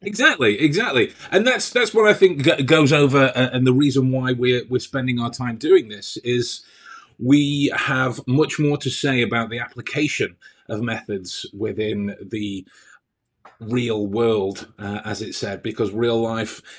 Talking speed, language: 165 wpm, English